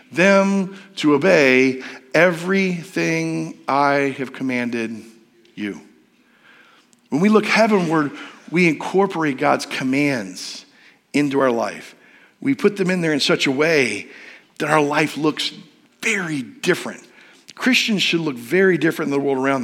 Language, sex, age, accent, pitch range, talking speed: English, male, 50-69, American, 150-205 Hz, 130 wpm